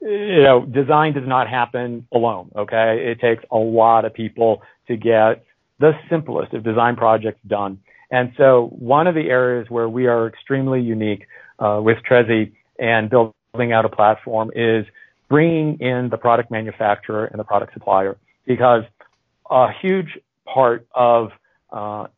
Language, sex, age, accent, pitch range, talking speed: English, male, 40-59, American, 110-125 Hz, 155 wpm